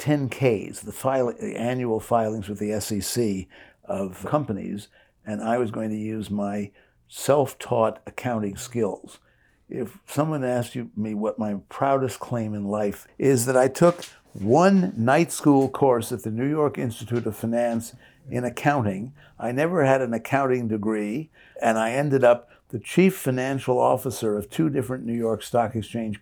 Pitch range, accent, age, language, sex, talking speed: 110-145 Hz, American, 60-79, English, male, 155 wpm